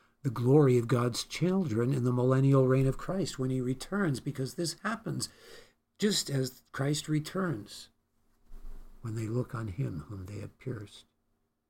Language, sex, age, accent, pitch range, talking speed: English, male, 60-79, American, 100-130 Hz, 155 wpm